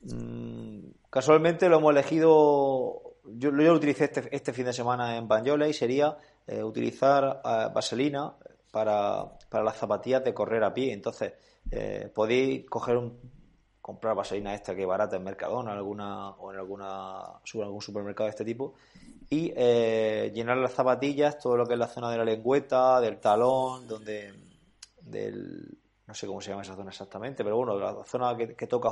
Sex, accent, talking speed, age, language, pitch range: male, Spanish, 175 wpm, 20-39, Spanish, 110-135 Hz